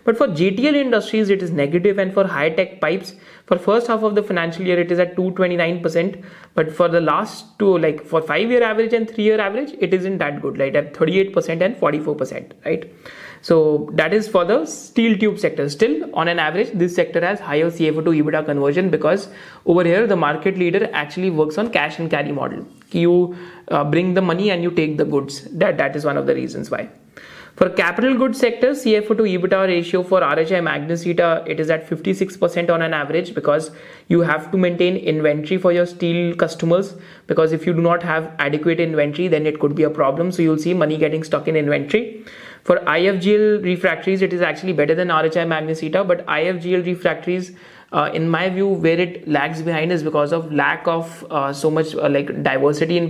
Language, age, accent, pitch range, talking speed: Hindi, 30-49, native, 160-190 Hz, 215 wpm